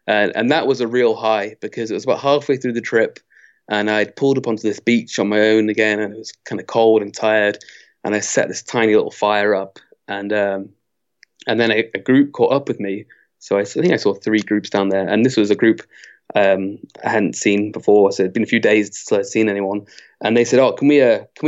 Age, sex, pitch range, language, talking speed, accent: 20-39, male, 105-120 Hz, English, 255 wpm, British